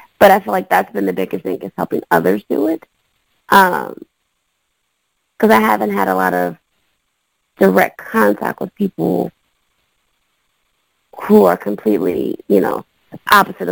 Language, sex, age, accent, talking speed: English, female, 20-39, American, 140 wpm